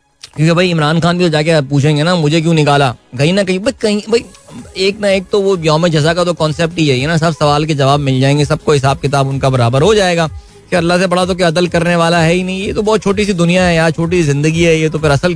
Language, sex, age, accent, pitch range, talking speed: Hindi, male, 20-39, native, 140-175 Hz, 270 wpm